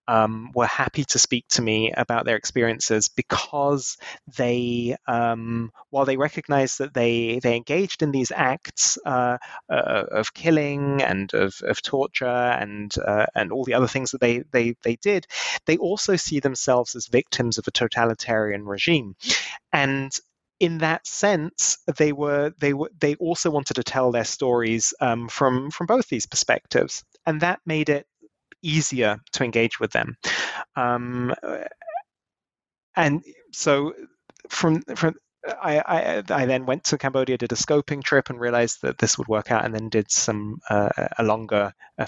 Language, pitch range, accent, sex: English, 115-155 Hz, British, male